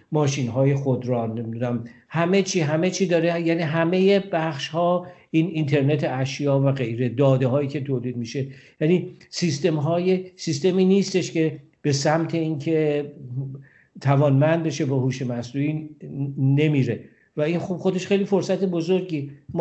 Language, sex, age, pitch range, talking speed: Persian, male, 50-69, 135-160 Hz, 140 wpm